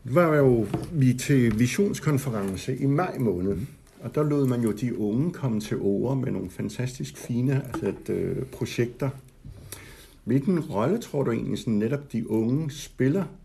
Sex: male